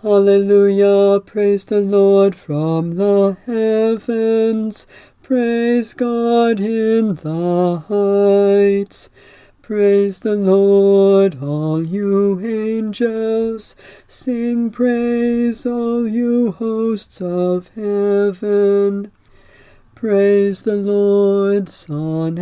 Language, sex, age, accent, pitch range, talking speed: English, male, 40-59, American, 200-230 Hz, 80 wpm